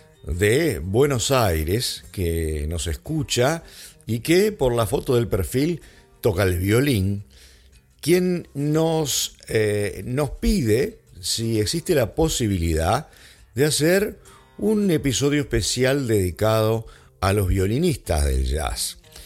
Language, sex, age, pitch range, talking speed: English, male, 50-69, 90-140 Hz, 110 wpm